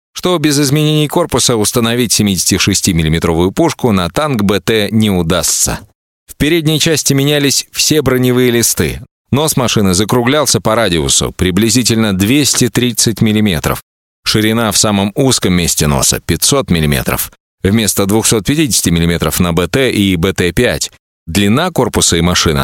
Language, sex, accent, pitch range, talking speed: Russian, male, native, 95-125 Hz, 125 wpm